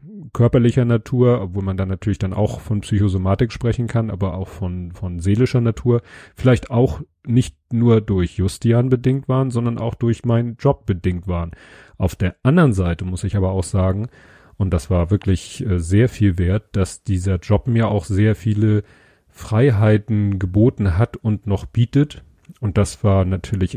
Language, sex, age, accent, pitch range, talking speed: German, male, 40-59, German, 95-115 Hz, 165 wpm